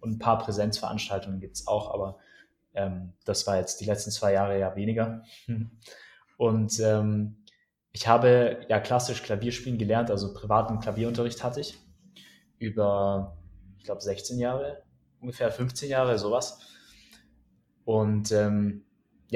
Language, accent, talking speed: German, German, 130 wpm